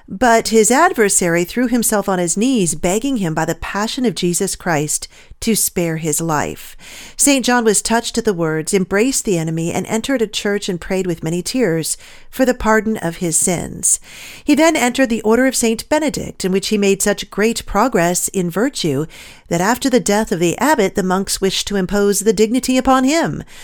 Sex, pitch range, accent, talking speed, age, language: female, 175-245 Hz, American, 200 wpm, 40-59, English